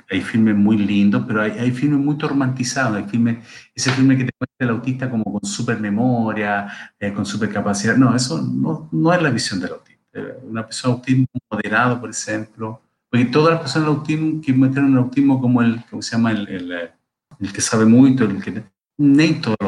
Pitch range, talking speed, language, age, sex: 105-130 Hz, 190 wpm, Portuguese, 50-69, male